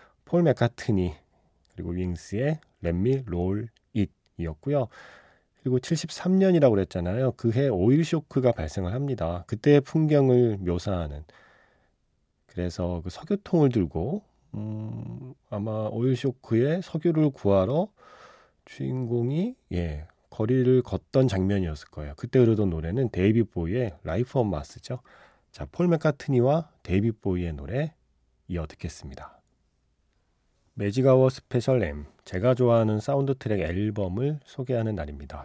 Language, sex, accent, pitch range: Korean, male, native, 90-130 Hz